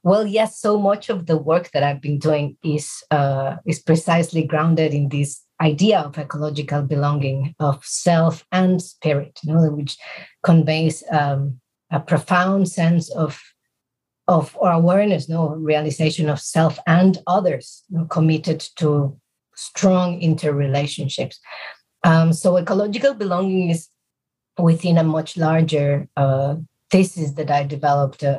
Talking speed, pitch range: 145 wpm, 145-170 Hz